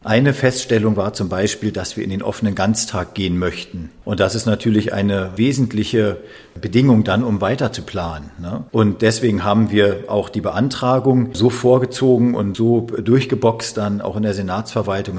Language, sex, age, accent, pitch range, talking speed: German, male, 40-59, German, 100-115 Hz, 170 wpm